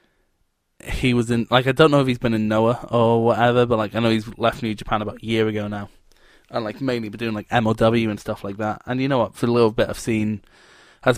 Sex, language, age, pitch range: male, English, 20-39, 110-130 Hz